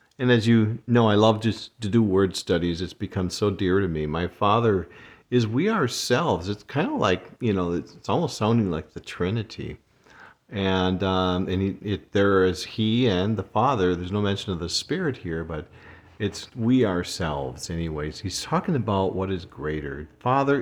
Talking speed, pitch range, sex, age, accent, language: 185 wpm, 90-115 Hz, male, 50-69, American, English